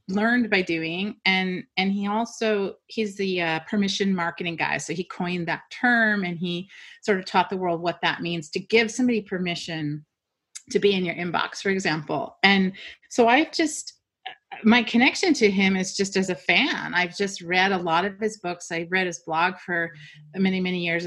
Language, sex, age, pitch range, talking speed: English, female, 30-49, 175-225 Hz, 195 wpm